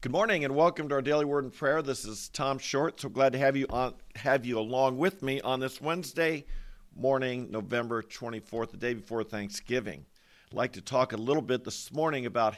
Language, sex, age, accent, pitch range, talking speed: English, male, 50-69, American, 115-150 Hz, 220 wpm